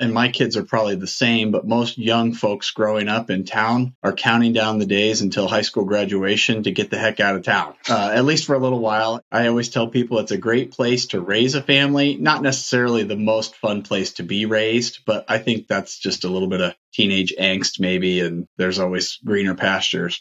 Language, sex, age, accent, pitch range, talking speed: English, male, 30-49, American, 105-125 Hz, 225 wpm